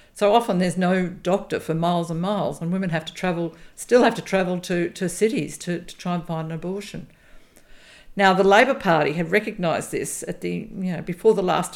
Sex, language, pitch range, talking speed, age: female, English, 165-195 Hz, 215 wpm, 50-69